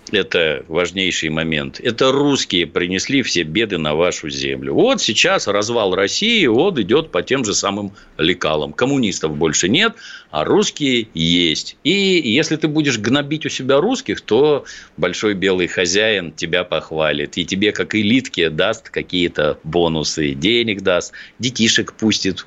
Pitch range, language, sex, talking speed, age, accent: 85-140 Hz, Russian, male, 140 wpm, 50-69, native